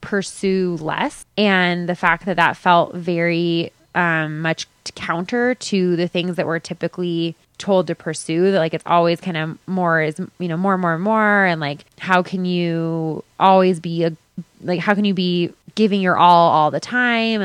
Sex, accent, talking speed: female, American, 190 wpm